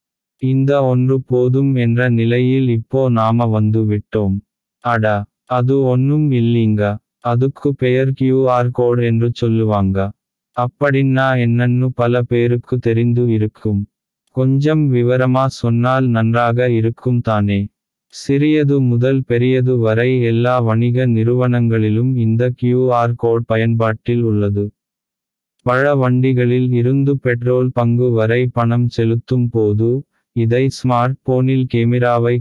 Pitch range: 115-130 Hz